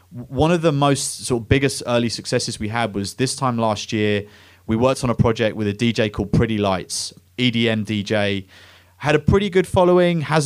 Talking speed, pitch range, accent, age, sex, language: 200 wpm, 105-130 Hz, British, 30-49, male, English